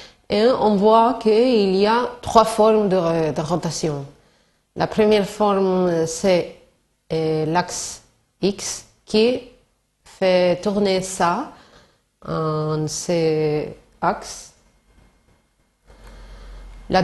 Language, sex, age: Spanish, female, 30-49